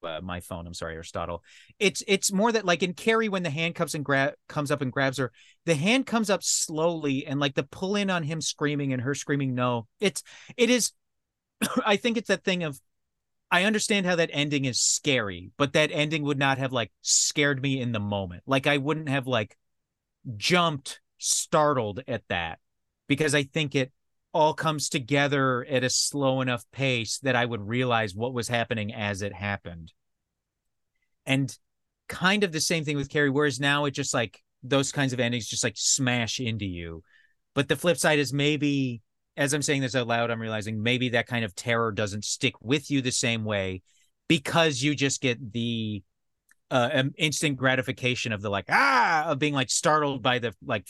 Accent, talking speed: American, 195 wpm